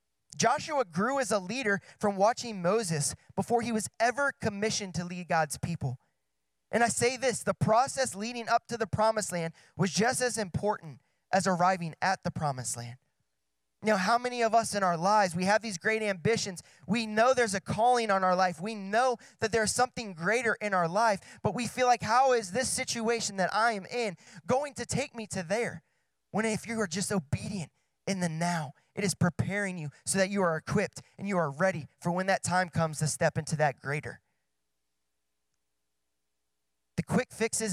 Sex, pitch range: male, 145-215 Hz